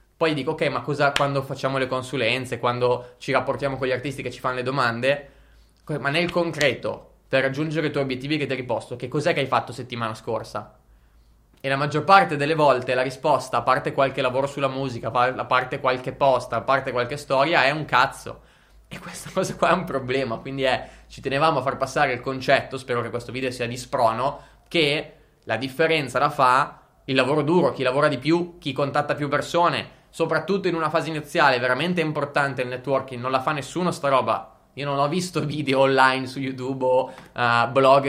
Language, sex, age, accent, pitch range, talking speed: Italian, male, 20-39, native, 130-155 Hz, 200 wpm